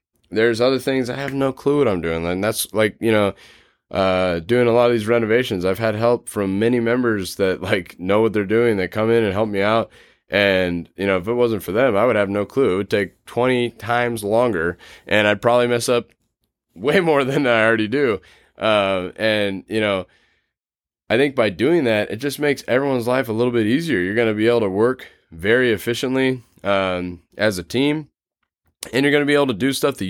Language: English